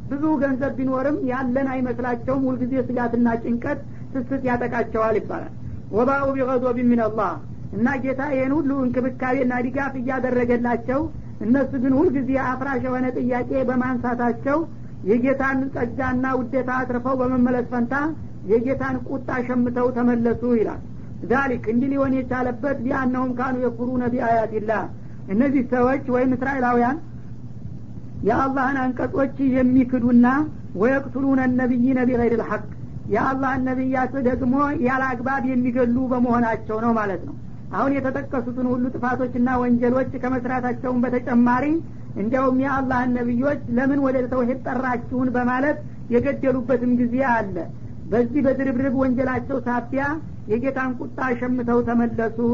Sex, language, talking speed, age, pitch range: female, Amharic, 110 wpm, 60-79, 245-265 Hz